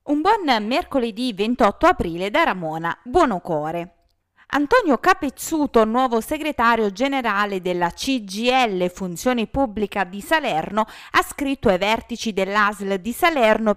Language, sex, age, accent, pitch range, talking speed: Italian, female, 30-49, native, 205-290 Hz, 115 wpm